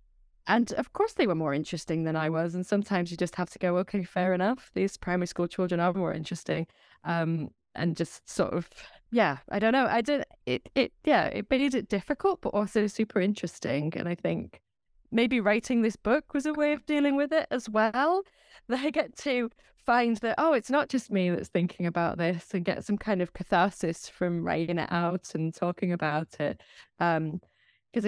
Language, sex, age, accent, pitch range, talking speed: English, female, 20-39, British, 165-220 Hz, 205 wpm